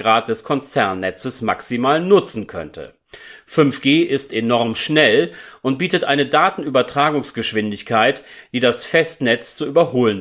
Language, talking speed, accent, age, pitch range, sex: German, 105 wpm, German, 40-59, 115-155 Hz, male